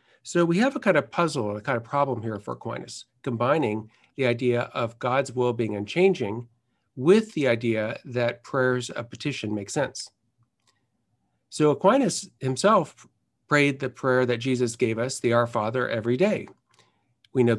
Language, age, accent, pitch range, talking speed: English, 50-69, American, 115-150 Hz, 165 wpm